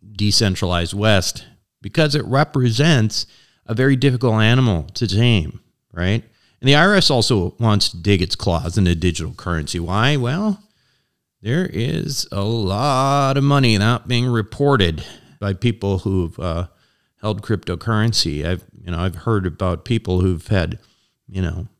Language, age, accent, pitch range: English, 40-59, American, 90-115 Hz